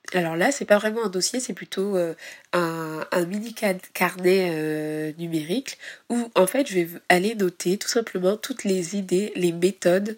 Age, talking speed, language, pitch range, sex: 20-39, 185 wpm, French, 175-210 Hz, female